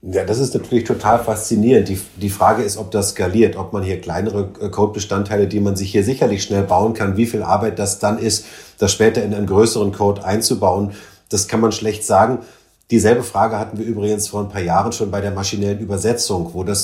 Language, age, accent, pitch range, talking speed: German, 30-49, German, 100-115 Hz, 215 wpm